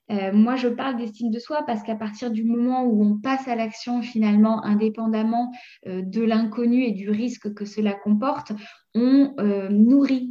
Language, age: French, 20-39